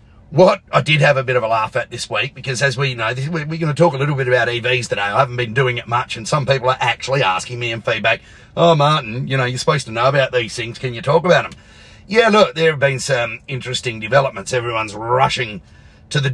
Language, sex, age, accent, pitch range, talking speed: English, male, 40-59, Australian, 115-135 Hz, 255 wpm